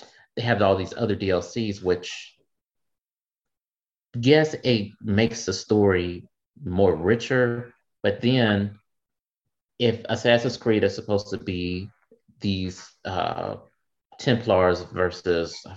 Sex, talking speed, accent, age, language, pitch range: male, 105 wpm, American, 30-49, English, 90-120 Hz